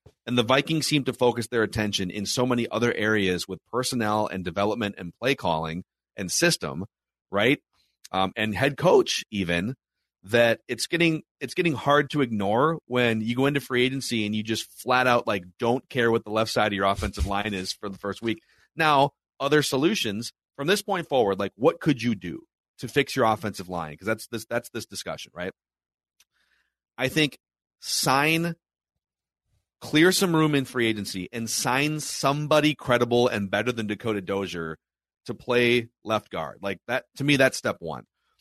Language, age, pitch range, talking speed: English, 30-49, 105-140 Hz, 180 wpm